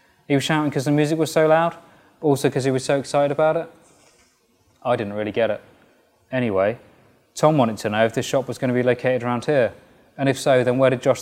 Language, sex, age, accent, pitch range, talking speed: English, male, 20-39, British, 120-140 Hz, 235 wpm